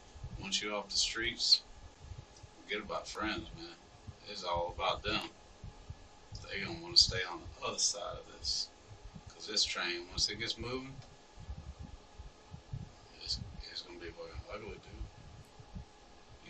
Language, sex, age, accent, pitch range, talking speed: English, male, 40-59, American, 85-110 Hz, 150 wpm